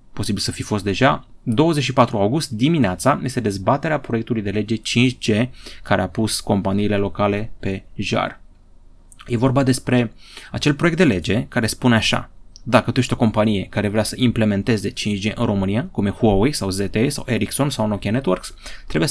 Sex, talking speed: male, 170 wpm